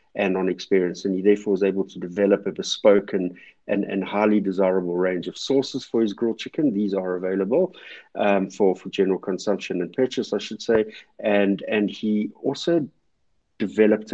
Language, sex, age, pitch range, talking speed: English, male, 50-69, 95-110 Hz, 180 wpm